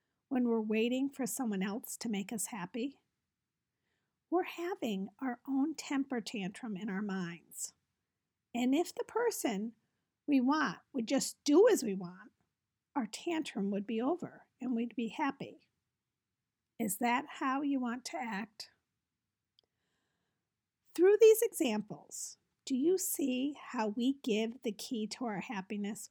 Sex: female